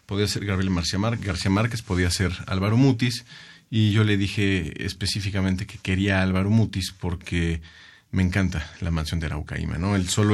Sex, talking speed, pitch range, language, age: male, 170 wpm, 95-110 Hz, Spanish, 40-59